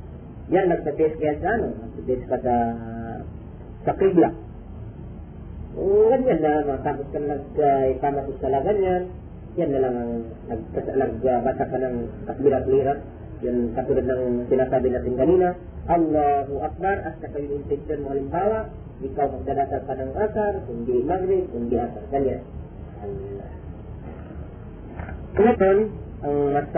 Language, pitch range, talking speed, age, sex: Filipino, 115-175 Hz, 110 wpm, 40-59, male